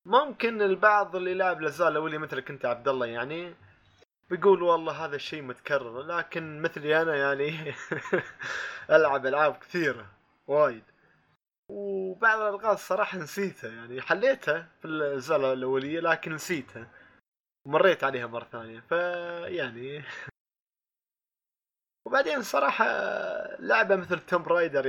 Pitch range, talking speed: 125-175 Hz, 110 wpm